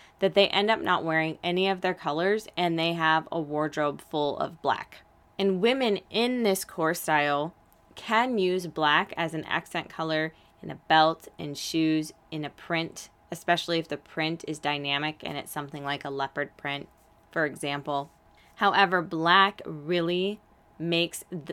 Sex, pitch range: female, 155-190 Hz